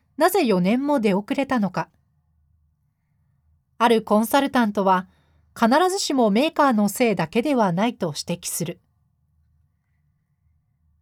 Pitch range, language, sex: 190-260 Hz, Japanese, female